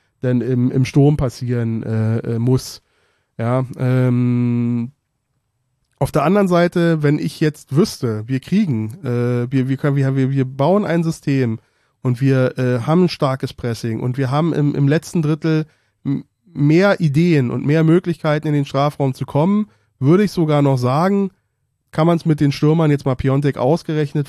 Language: German